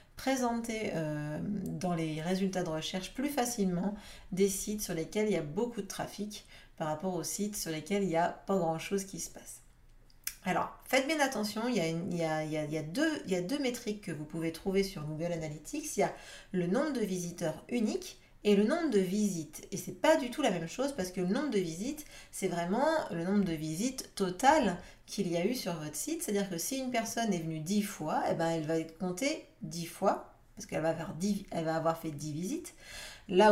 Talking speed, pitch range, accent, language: 220 wpm, 165-205 Hz, French, French